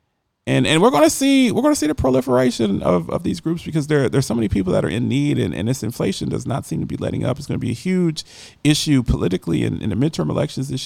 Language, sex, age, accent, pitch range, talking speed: English, male, 30-49, American, 120-180 Hz, 265 wpm